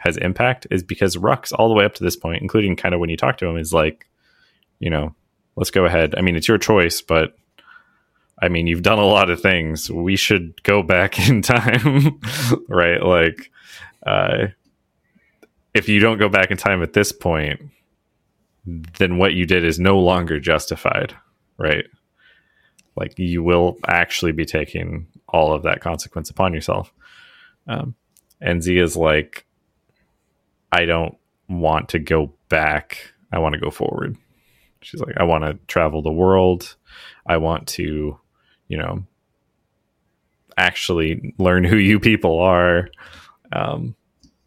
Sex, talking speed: male, 160 wpm